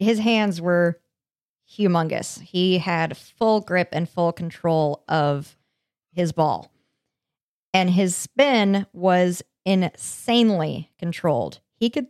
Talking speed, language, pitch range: 110 wpm, English, 175-225 Hz